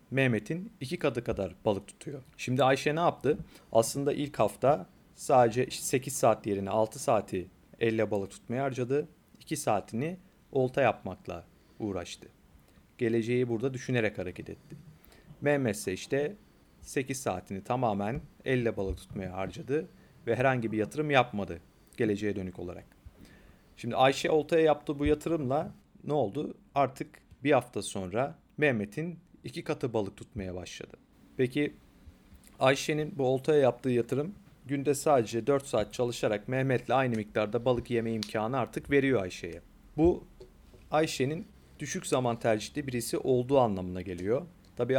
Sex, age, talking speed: male, 40-59, 130 wpm